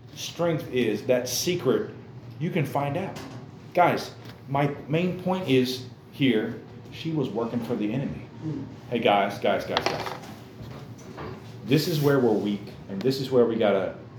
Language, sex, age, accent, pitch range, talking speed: English, male, 40-59, American, 120-145 Hz, 150 wpm